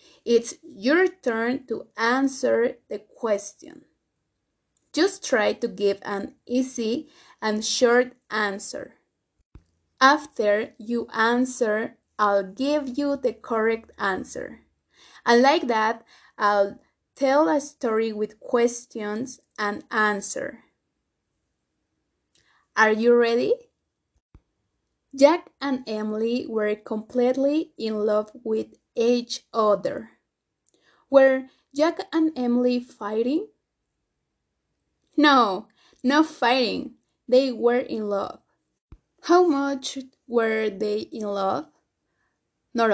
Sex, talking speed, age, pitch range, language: female, 95 wpm, 20-39, 220-275 Hz, English